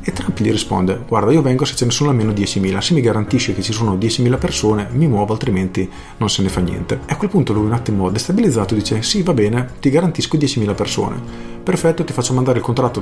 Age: 40-59